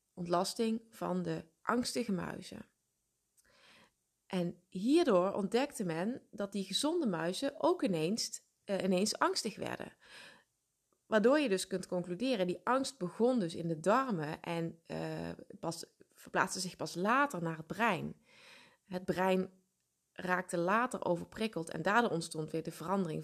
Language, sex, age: Dutch, female, 20-39